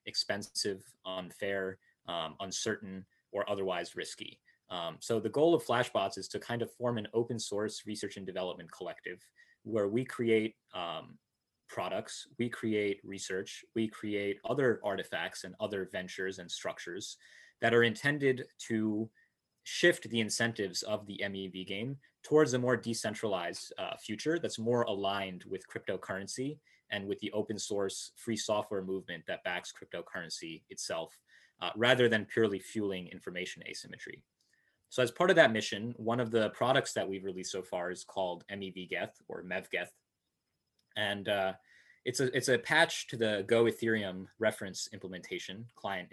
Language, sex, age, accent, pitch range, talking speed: English, male, 30-49, American, 95-115 Hz, 150 wpm